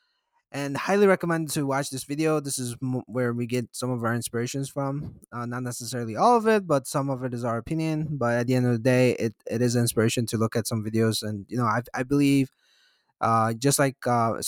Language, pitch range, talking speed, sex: English, 120-150 Hz, 230 wpm, male